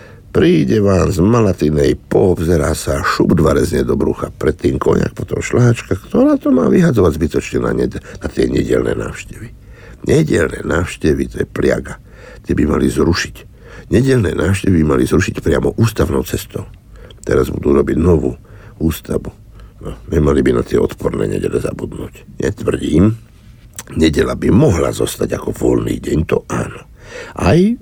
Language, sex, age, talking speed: Slovak, male, 60-79, 140 wpm